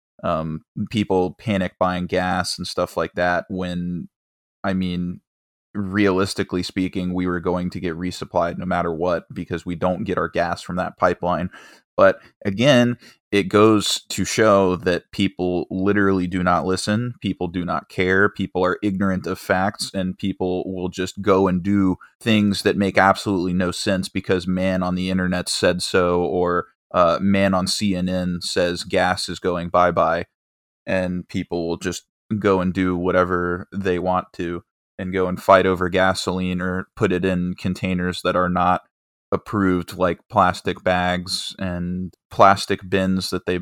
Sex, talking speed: male, 160 wpm